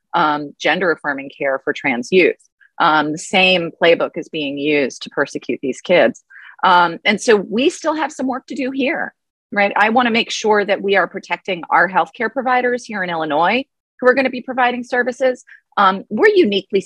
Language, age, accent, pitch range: English, 30-49, American, 160-245 Hz